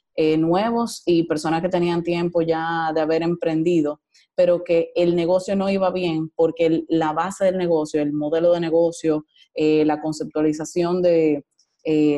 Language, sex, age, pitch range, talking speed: Spanish, female, 20-39, 155-175 Hz, 165 wpm